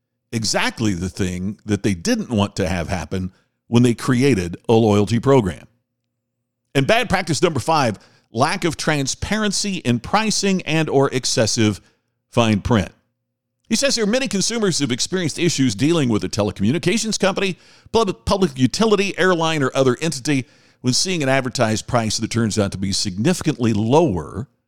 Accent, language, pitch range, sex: American, English, 110-150 Hz, male